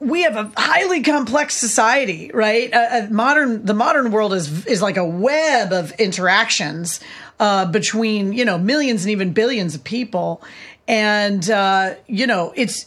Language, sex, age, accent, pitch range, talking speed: English, female, 40-59, American, 195-235 Hz, 165 wpm